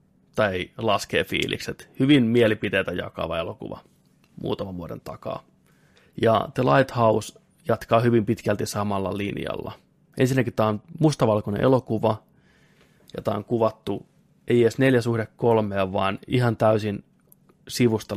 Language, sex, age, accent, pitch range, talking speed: Finnish, male, 20-39, native, 105-130 Hz, 110 wpm